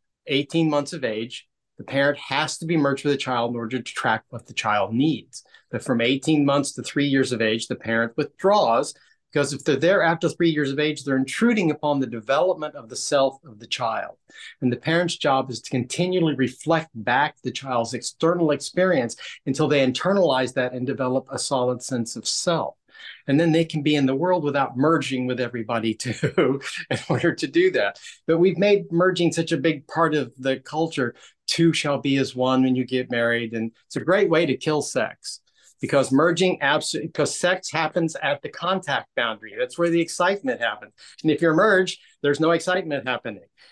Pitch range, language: 130-165 Hz, English